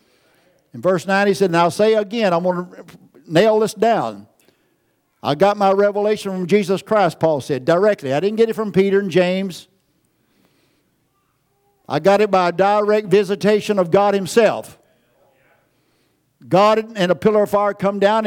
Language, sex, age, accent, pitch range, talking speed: English, male, 60-79, American, 180-215 Hz, 165 wpm